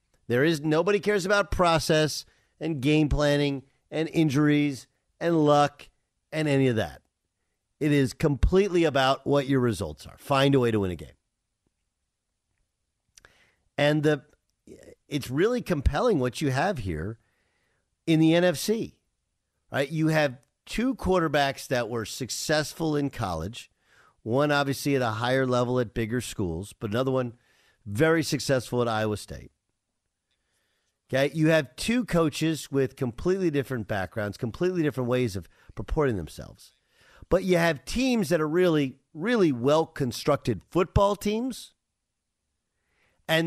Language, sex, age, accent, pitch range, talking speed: English, male, 50-69, American, 115-160 Hz, 135 wpm